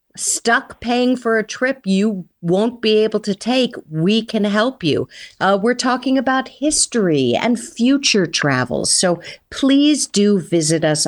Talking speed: 150 wpm